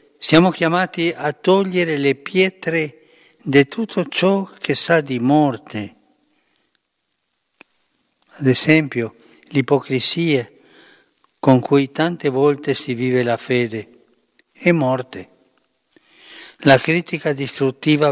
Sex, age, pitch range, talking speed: male, 60-79, 125-160 Hz, 95 wpm